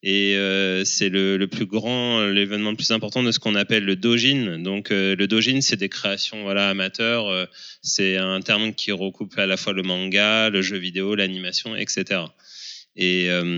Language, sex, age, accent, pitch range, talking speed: French, male, 20-39, French, 95-120 Hz, 195 wpm